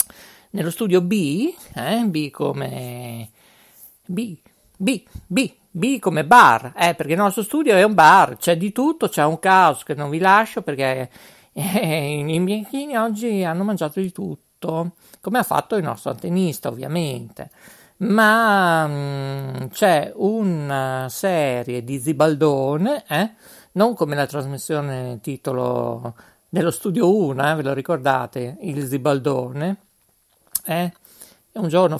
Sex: male